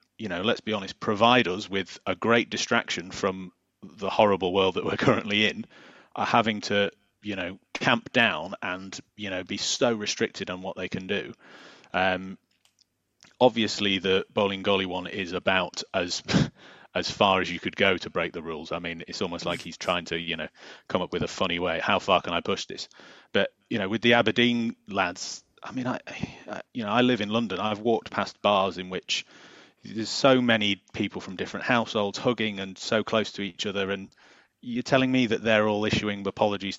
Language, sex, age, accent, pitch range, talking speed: English, male, 30-49, British, 90-115 Hz, 200 wpm